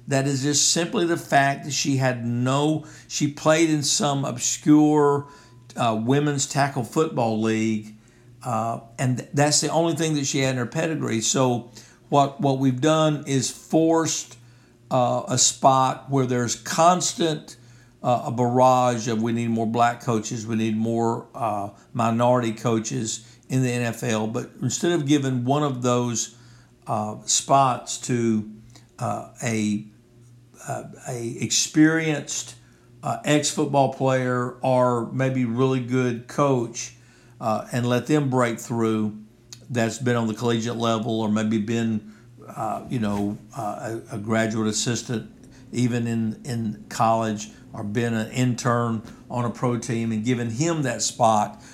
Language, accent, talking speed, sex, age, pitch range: English, American, 145 wpm, male, 60-79, 115-135 Hz